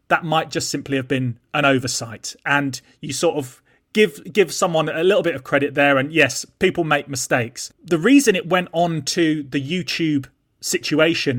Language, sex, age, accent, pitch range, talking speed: English, male, 30-49, British, 140-195 Hz, 185 wpm